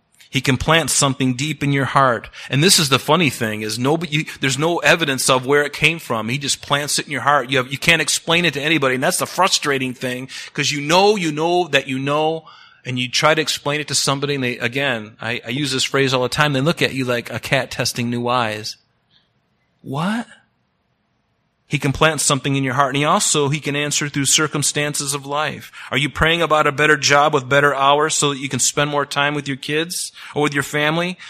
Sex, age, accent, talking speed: male, 30-49, American, 235 wpm